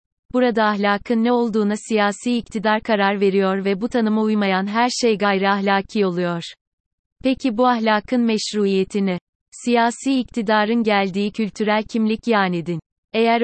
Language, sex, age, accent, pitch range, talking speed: Turkish, female, 30-49, native, 195-225 Hz, 130 wpm